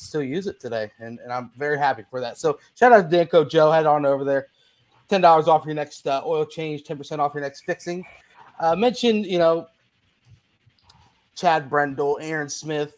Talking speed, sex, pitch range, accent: 200 wpm, male, 140-170 Hz, American